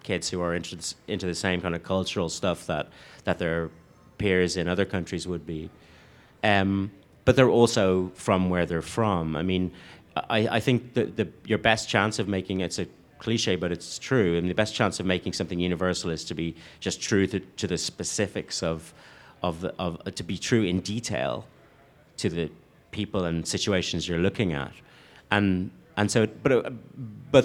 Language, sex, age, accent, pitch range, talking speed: English, male, 30-49, British, 85-105 Hz, 190 wpm